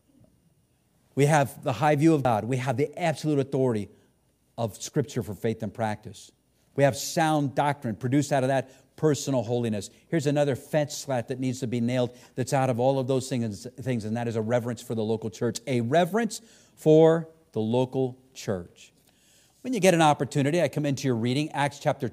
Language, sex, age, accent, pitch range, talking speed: English, male, 50-69, American, 125-160 Hz, 195 wpm